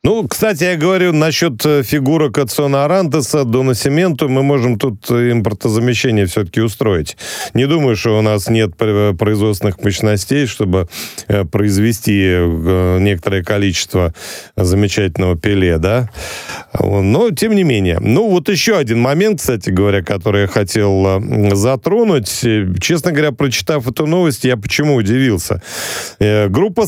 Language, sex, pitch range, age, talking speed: Russian, male, 100-150 Hz, 40-59, 125 wpm